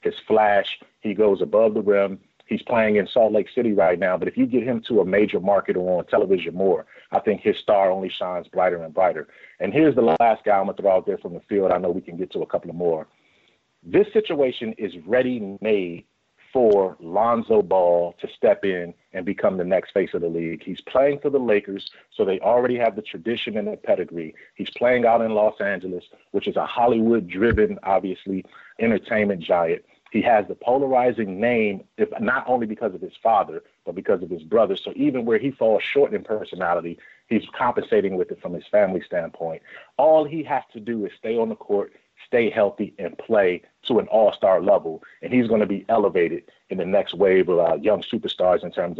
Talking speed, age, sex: 210 wpm, 40-59, male